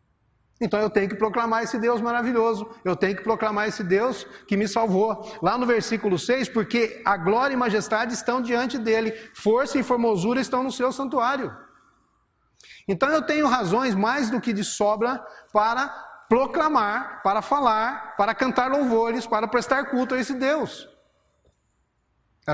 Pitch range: 200-245 Hz